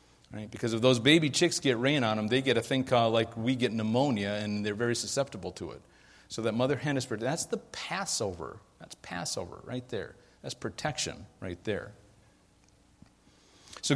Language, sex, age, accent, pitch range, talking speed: English, male, 50-69, American, 105-135 Hz, 180 wpm